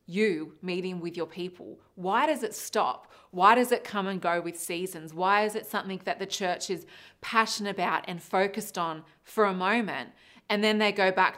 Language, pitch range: English, 175-215 Hz